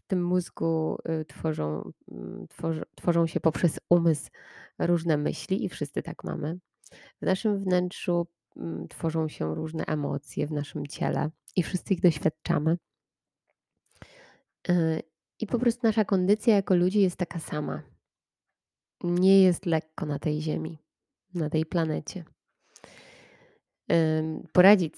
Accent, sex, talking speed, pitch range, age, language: native, female, 115 wpm, 155-180 Hz, 20-39, Polish